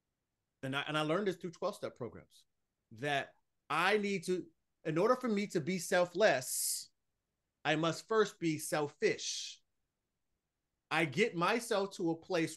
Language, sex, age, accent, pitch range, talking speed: English, male, 30-49, American, 155-200 Hz, 155 wpm